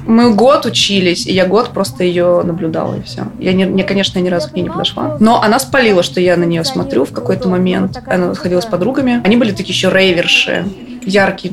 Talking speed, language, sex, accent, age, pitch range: 225 wpm, Russian, female, native, 20-39, 180-205 Hz